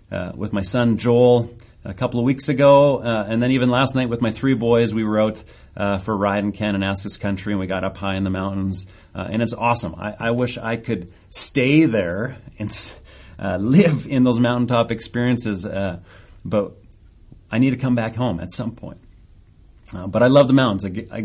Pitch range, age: 95-120 Hz, 40-59